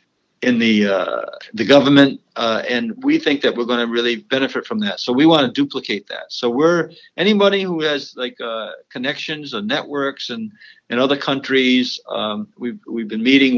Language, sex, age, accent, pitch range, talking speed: English, male, 50-69, American, 110-140 Hz, 185 wpm